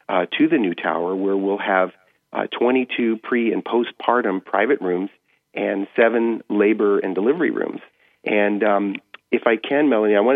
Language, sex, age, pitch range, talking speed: English, male, 40-59, 95-115 Hz, 170 wpm